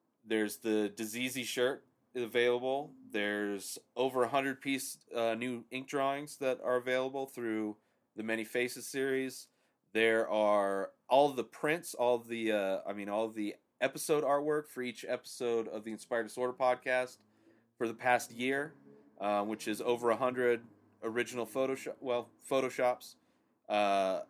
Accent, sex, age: American, male, 30-49